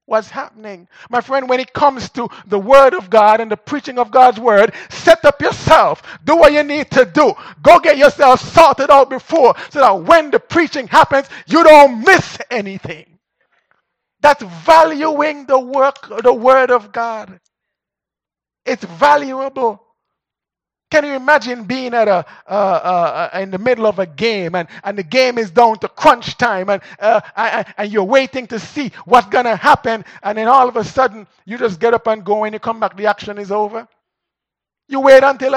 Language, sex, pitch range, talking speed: English, male, 215-270 Hz, 190 wpm